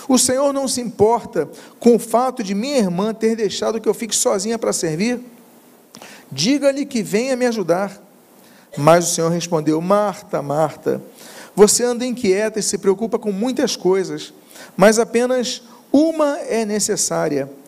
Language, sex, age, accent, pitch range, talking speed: Portuguese, male, 40-59, Brazilian, 180-235 Hz, 150 wpm